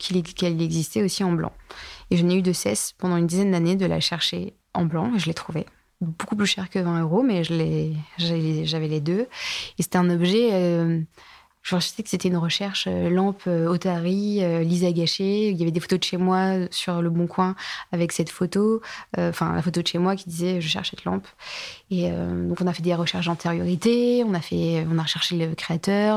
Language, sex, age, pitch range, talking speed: French, female, 20-39, 170-200 Hz, 230 wpm